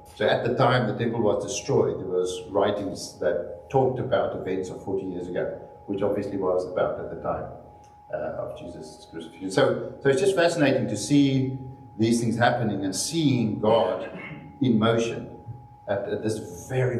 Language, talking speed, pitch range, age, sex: English, 175 wpm, 100-140 Hz, 50-69, male